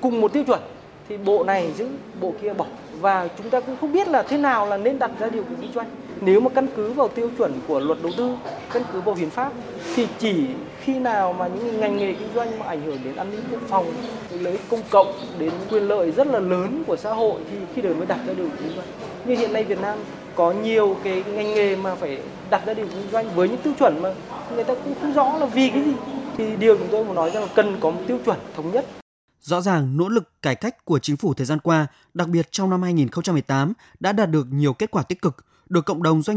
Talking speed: 260 wpm